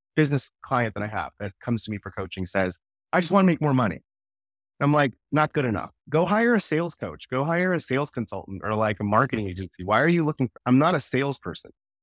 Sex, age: male, 30-49